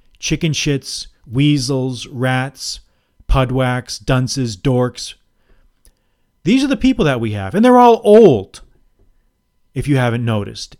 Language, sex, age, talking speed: English, male, 40-59, 120 wpm